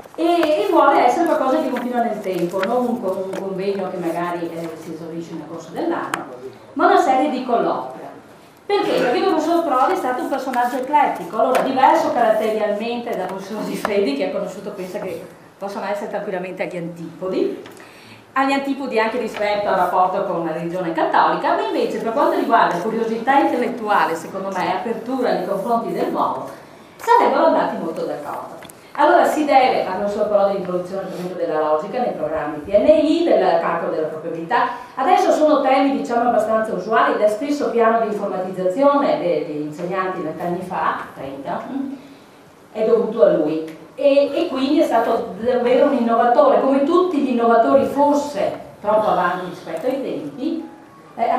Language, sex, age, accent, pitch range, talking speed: Italian, female, 30-49, native, 185-275 Hz, 160 wpm